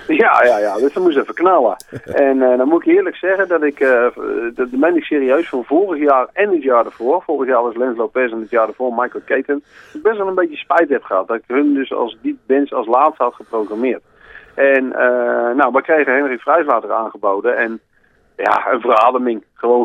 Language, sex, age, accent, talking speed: Dutch, male, 40-59, Dutch, 215 wpm